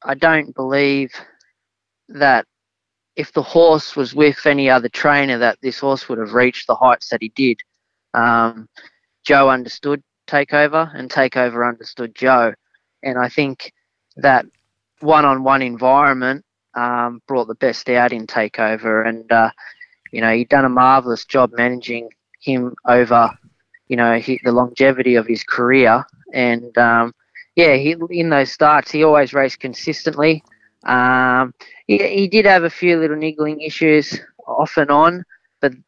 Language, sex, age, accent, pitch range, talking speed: English, male, 20-39, Australian, 120-140 Hz, 145 wpm